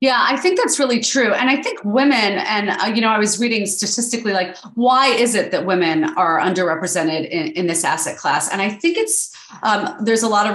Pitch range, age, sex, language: 185-240 Hz, 30-49, female, English